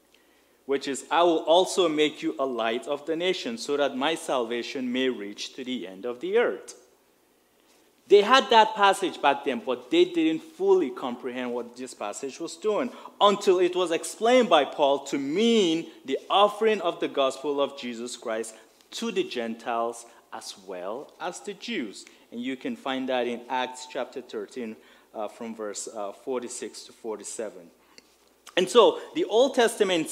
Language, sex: English, male